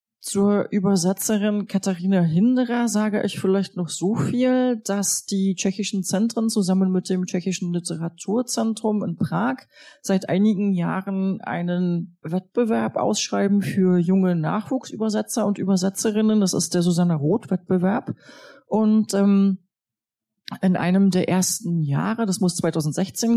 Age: 30-49